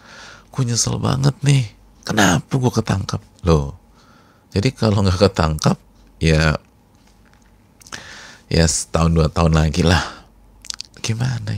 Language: Indonesian